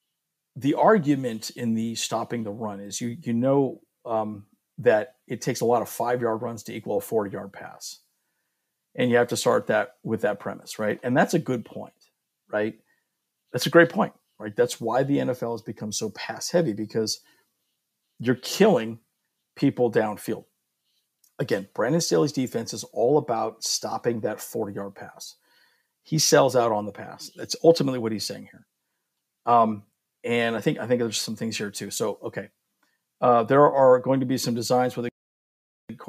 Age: 50-69